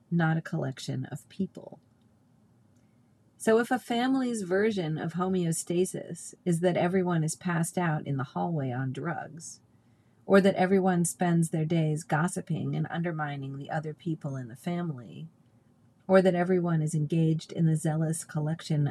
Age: 40-59